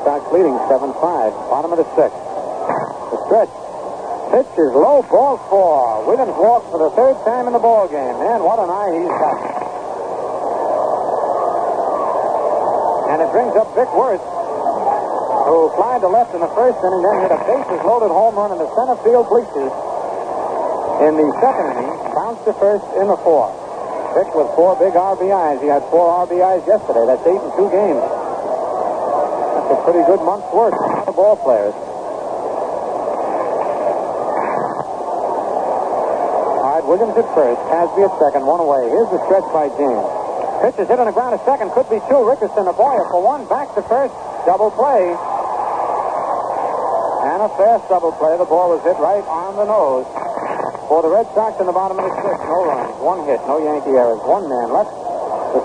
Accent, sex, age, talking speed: American, male, 60-79, 170 wpm